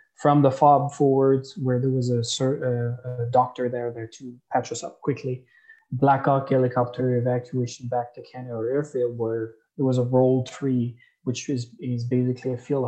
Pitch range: 120-135 Hz